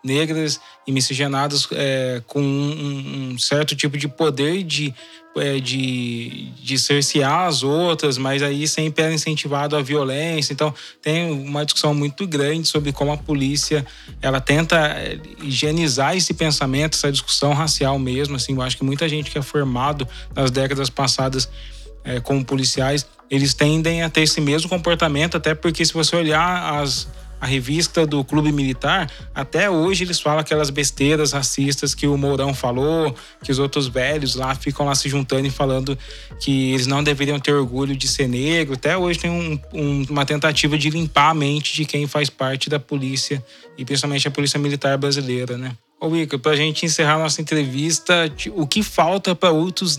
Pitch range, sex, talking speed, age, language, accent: 140-155 Hz, male, 165 wpm, 20-39, Portuguese, Brazilian